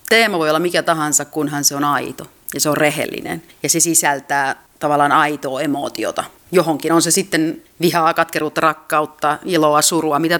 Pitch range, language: 145-165 Hz, Finnish